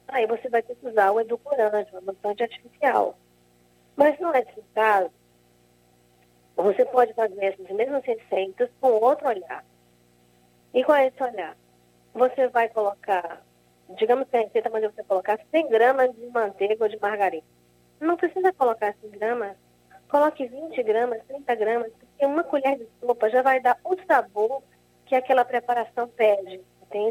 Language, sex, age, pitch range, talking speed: Portuguese, female, 20-39, 200-260 Hz, 160 wpm